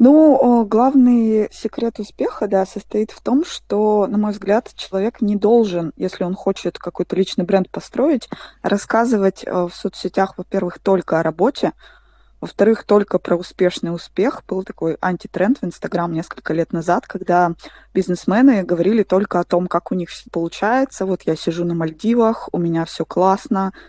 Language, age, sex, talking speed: Russian, 20-39, female, 155 wpm